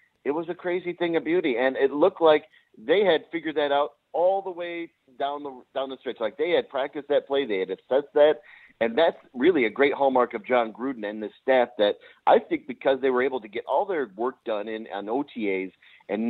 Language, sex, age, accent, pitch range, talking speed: English, male, 40-59, American, 115-150 Hz, 230 wpm